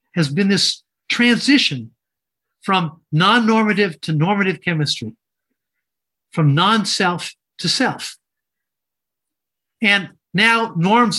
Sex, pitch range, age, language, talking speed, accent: male, 160-215 Hz, 50-69, English, 85 wpm, American